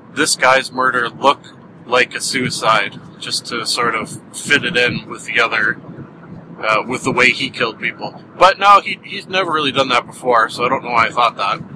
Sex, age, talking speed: male, 40-59, 210 wpm